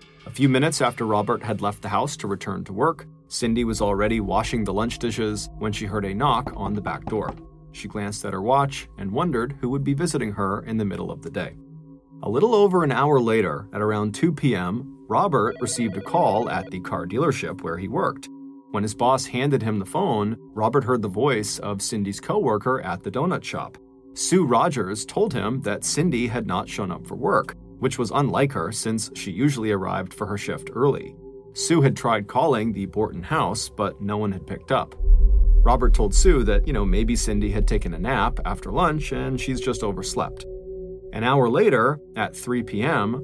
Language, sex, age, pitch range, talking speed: English, male, 30-49, 105-140 Hz, 205 wpm